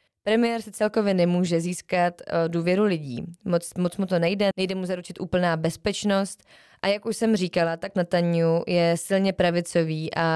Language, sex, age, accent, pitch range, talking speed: Czech, female, 20-39, native, 170-195 Hz, 160 wpm